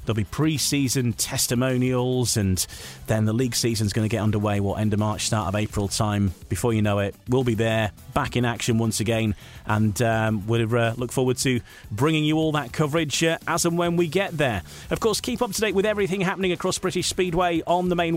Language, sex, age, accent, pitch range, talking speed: English, male, 30-49, British, 110-155 Hz, 225 wpm